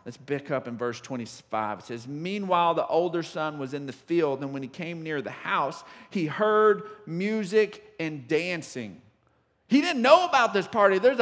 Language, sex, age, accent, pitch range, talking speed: English, male, 50-69, American, 170-255 Hz, 185 wpm